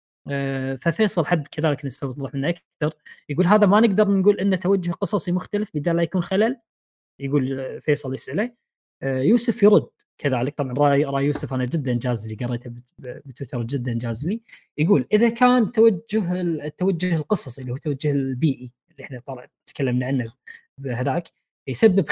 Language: Arabic